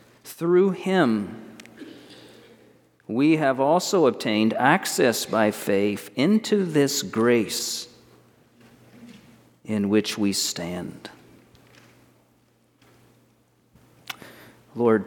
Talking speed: 70 wpm